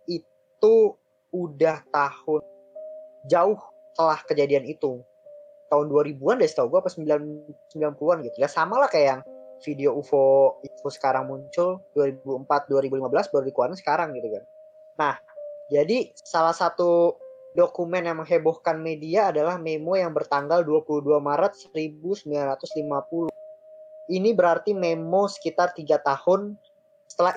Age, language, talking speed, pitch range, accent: 20-39, Indonesian, 115 wpm, 150-185 Hz, native